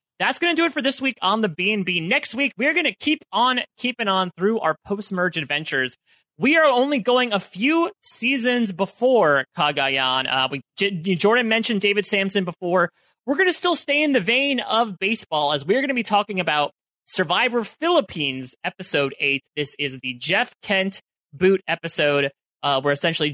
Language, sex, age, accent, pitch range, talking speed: English, male, 30-49, American, 145-230 Hz, 190 wpm